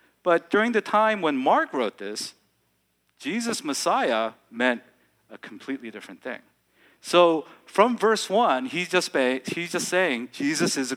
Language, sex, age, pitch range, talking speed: English, male, 40-59, 125-185 Hz, 150 wpm